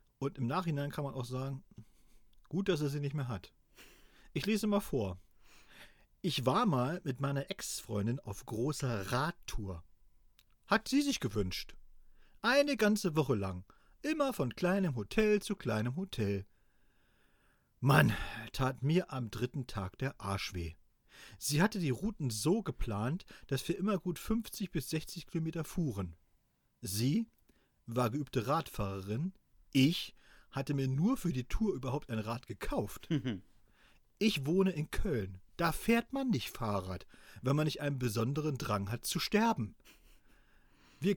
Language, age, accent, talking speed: German, 40-59, German, 145 wpm